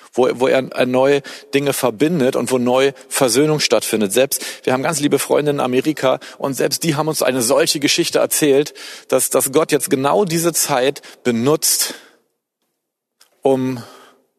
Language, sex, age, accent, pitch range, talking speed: German, male, 40-59, German, 115-145 Hz, 150 wpm